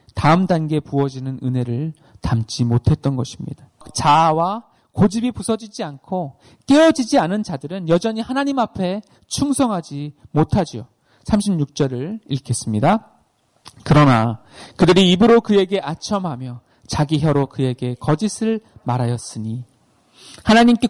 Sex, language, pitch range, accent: male, Korean, 140-225 Hz, native